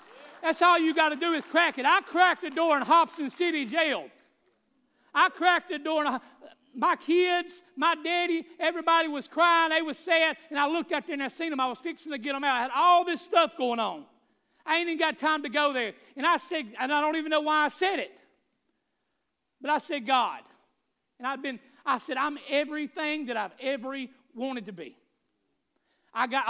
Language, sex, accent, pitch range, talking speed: English, male, American, 260-330 Hz, 205 wpm